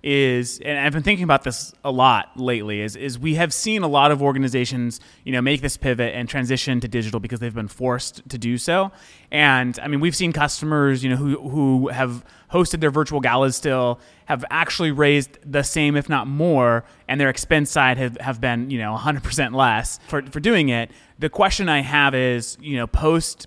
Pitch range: 120-145 Hz